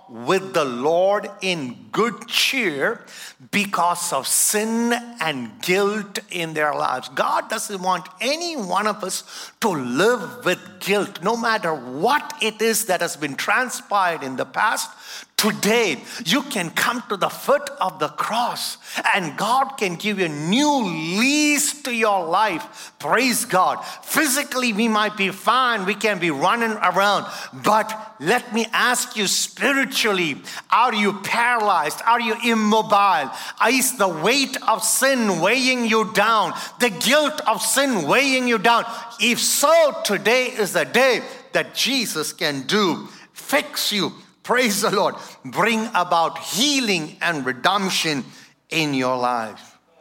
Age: 50-69